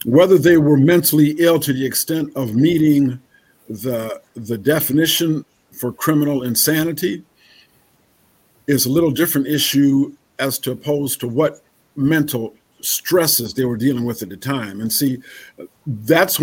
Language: English